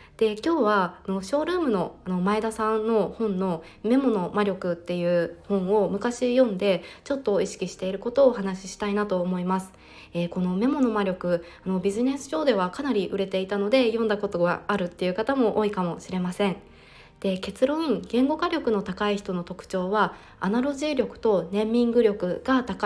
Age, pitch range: 20-39, 185-235 Hz